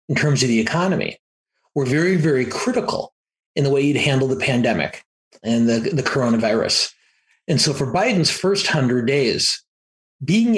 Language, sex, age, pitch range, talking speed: English, male, 40-59, 120-150 Hz, 160 wpm